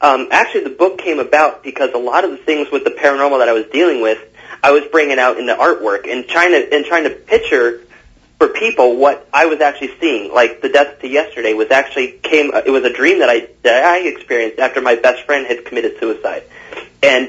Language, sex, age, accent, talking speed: English, male, 30-49, American, 230 wpm